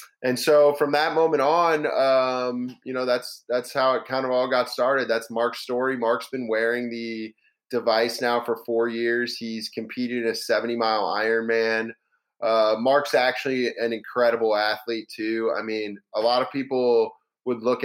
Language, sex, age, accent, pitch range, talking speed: English, male, 20-39, American, 115-135 Hz, 180 wpm